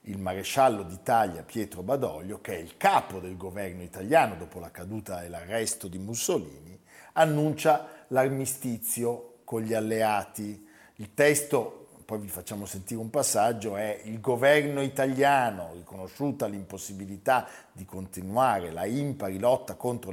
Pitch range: 100-135 Hz